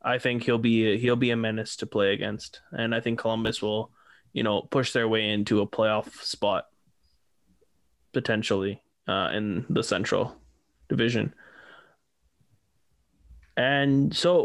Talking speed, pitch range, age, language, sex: 135 wpm, 110-135 Hz, 20-39, English, male